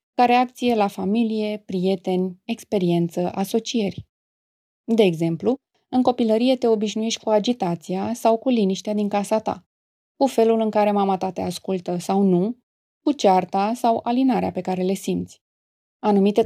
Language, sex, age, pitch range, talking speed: Romanian, female, 20-39, 195-240 Hz, 145 wpm